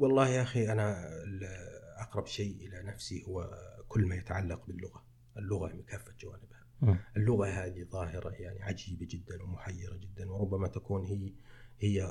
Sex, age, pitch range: male, 40-59, 95-120 Hz